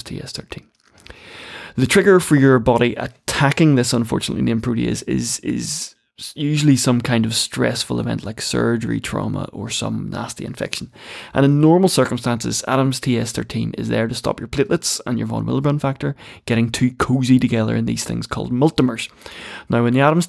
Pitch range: 115-140 Hz